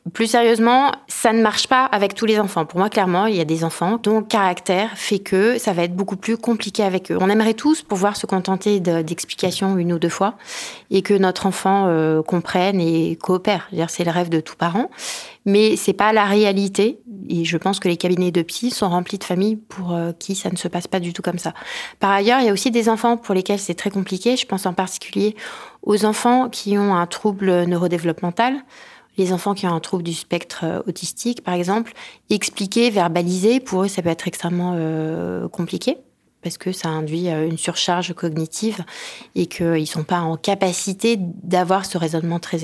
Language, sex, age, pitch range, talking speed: French, female, 20-39, 175-210 Hz, 215 wpm